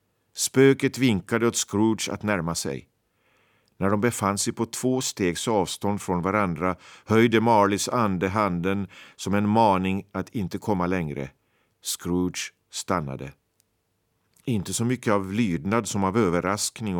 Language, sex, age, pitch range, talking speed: Swedish, male, 50-69, 100-135 Hz, 135 wpm